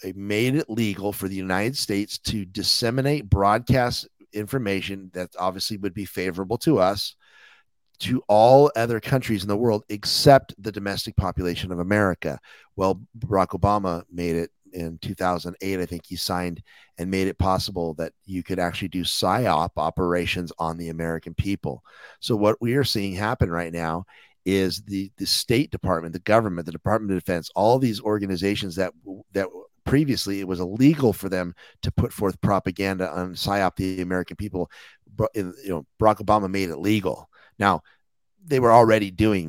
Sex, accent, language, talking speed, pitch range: male, American, English, 165 wpm, 90-105 Hz